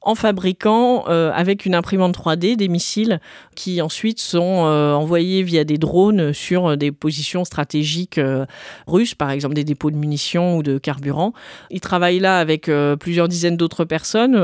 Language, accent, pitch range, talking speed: French, French, 155-190 Hz, 170 wpm